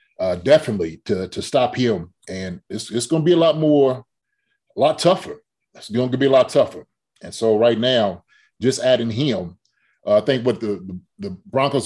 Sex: male